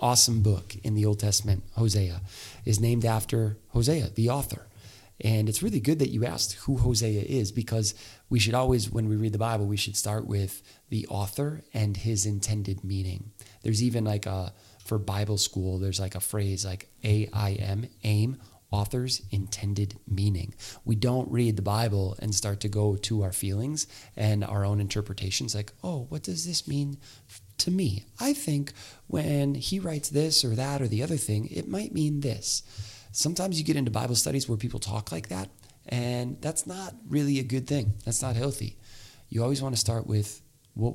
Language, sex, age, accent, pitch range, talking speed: English, male, 30-49, American, 100-125 Hz, 185 wpm